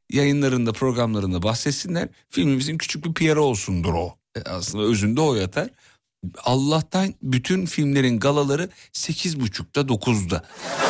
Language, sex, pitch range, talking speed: Turkish, male, 110-165 Hz, 110 wpm